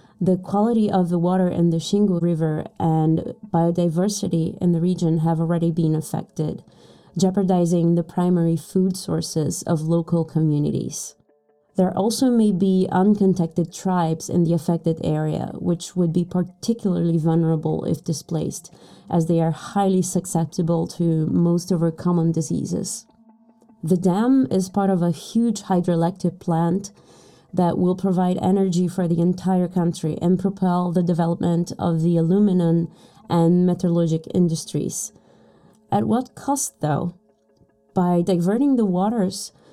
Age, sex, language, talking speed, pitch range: 20-39, female, English, 135 wpm, 170-195 Hz